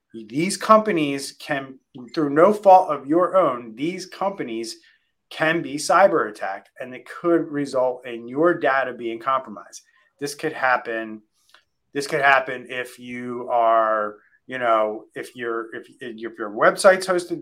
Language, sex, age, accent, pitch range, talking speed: English, male, 30-49, American, 125-165 Hz, 145 wpm